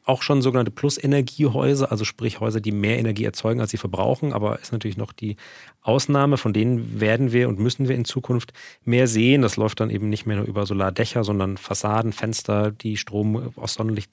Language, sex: German, male